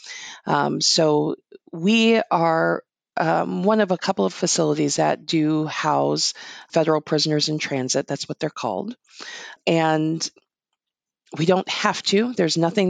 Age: 40-59